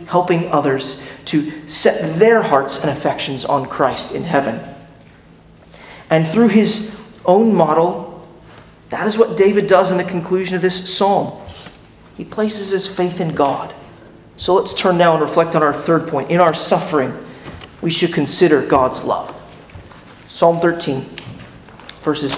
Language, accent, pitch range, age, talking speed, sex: English, American, 150-190 Hz, 40-59, 145 wpm, male